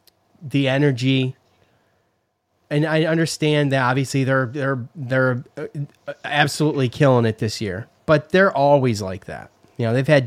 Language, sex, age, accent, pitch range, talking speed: English, male, 30-49, American, 110-145 Hz, 140 wpm